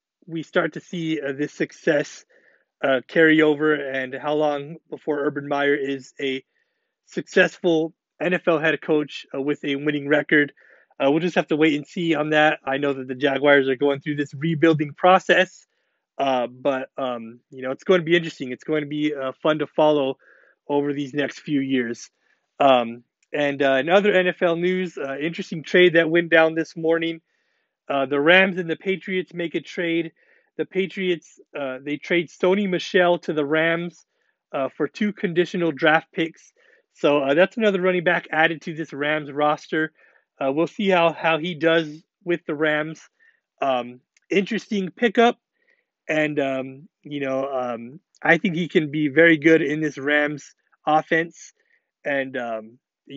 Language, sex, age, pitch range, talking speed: English, male, 30-49, 140-175 Hz, 175 wpm